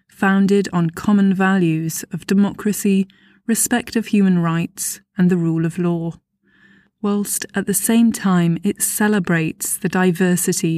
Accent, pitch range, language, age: British, 175-215 Hz, English, 20-39